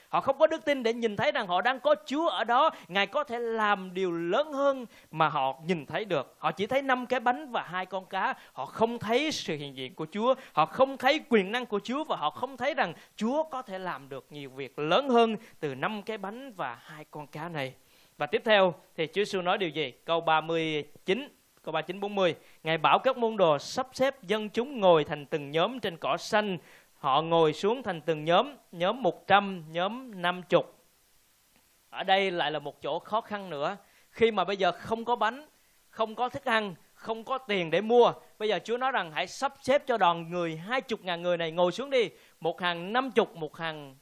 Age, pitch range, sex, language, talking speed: 20-39, 165-235 Hz, male, Vietnamese, 230 wpm